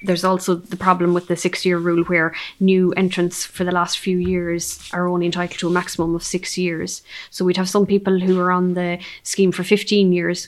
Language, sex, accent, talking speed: English, female, Irish, 220 wpm